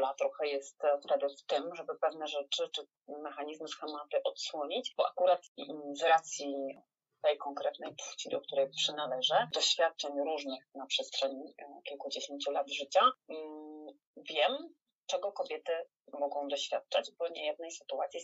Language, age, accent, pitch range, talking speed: Polish, 30-49, native, 145-190 Hz, 125 wpm